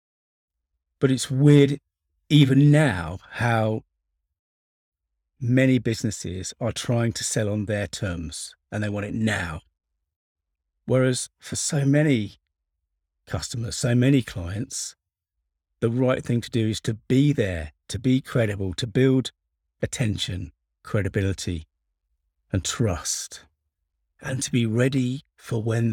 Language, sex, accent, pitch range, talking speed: English, male, British, 80-130 Hz, 120 wpm